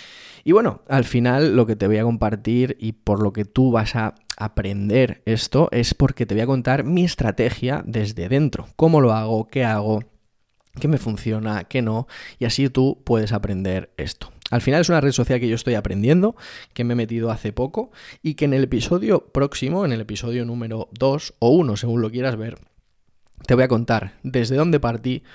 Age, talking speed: 20-39, 200 wpm